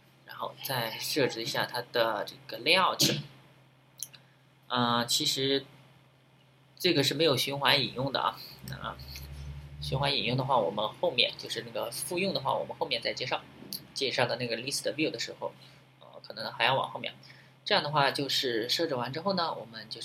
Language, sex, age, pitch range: Chinese, male, 20-39, 120-140 Hz